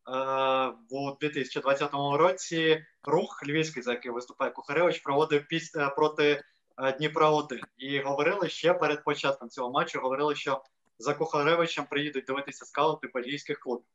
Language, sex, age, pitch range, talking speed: Ukrainian, male, 20-39, 135-155 Hz, 130 wpm